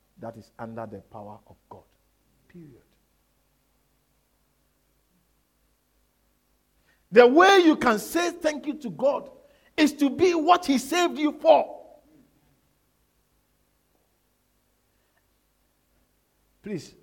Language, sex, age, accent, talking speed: English, male, 50-69, Nigerian, 90 wpm